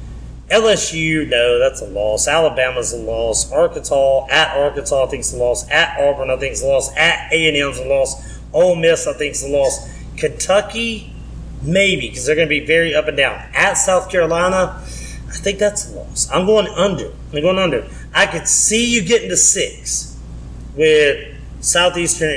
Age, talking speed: 30-49, 180 wpm